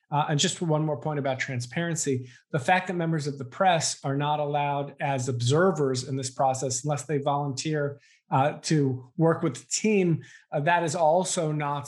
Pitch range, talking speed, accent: 130-155 Hz, 180 wpm, American